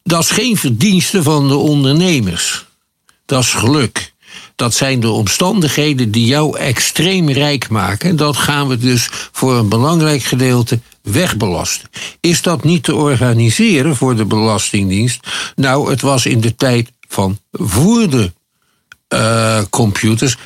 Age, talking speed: 60-79, 135 wpm